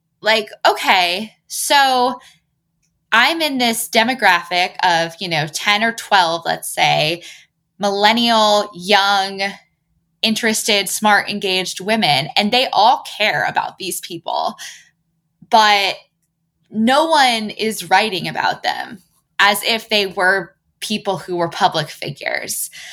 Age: 10-29